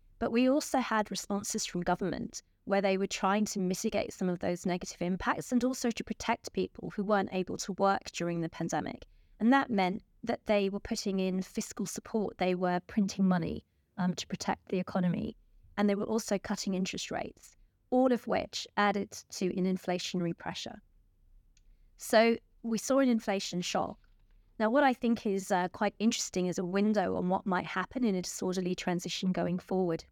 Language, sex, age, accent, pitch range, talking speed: English, female, 20-39, British, 185-220 Hz, 185 wpm